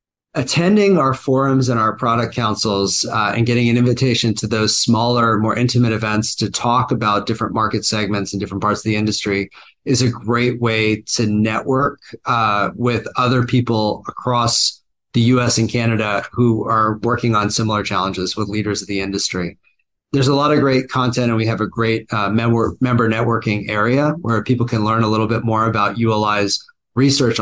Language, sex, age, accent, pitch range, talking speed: English, male, 30-49, American, 105-125 Hz, 180 wpm